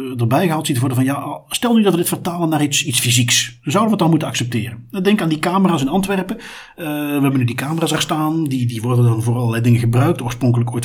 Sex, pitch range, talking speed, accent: male, 120-170 Hz, 255 wpm, Dutch